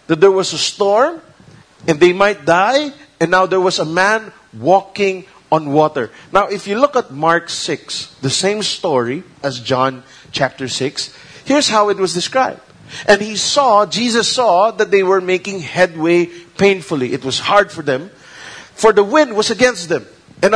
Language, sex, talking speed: English, male, 175 wpm